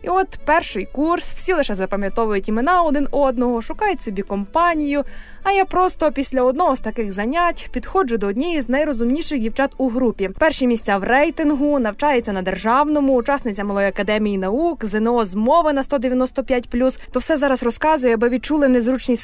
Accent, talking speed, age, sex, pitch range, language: native, 160 wpm, 20-39, female, 220-290 Hz, Ukrainian